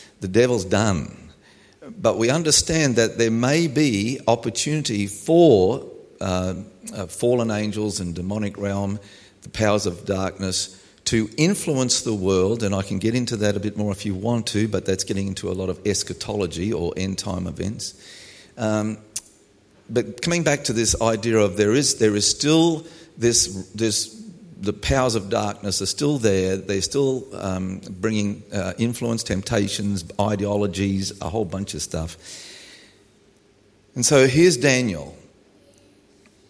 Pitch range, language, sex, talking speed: 95-115 Hz, English, male, 150 wpm